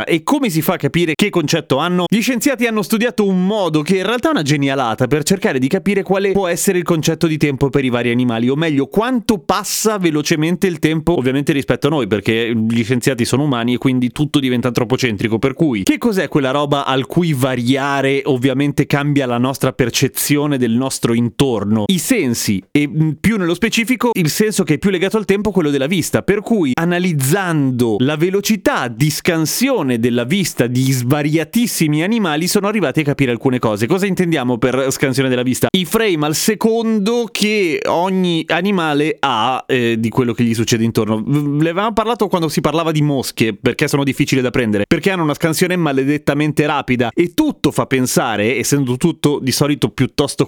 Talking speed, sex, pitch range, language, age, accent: 185 wpm, male, 130-180 Hz, Italian, 30-49, native